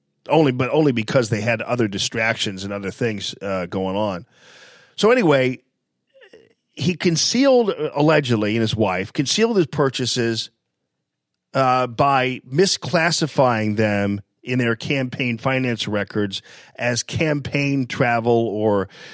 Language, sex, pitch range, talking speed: English, male, 115-160 Hz, 120 wpm